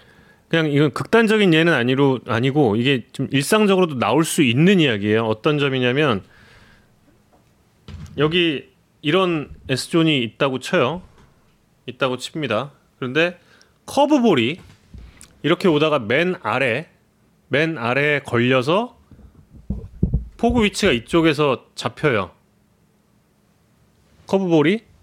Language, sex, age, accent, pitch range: Korean, male, 30-49, native, 130-200 Hz